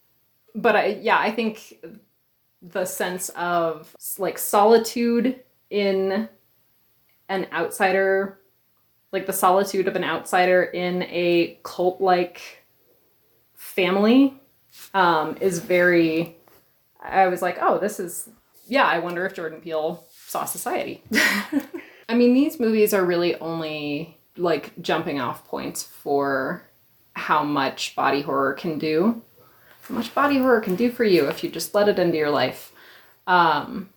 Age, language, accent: 20-39, English, American